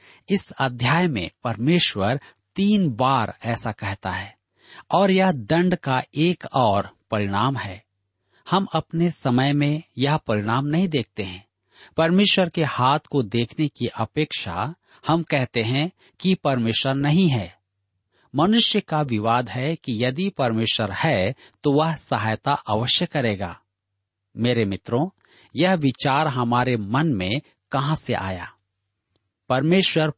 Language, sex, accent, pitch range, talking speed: Hindi, male, native, 105-155 Hz, 125 wpm